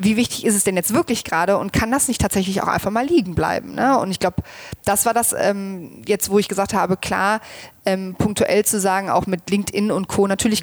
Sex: female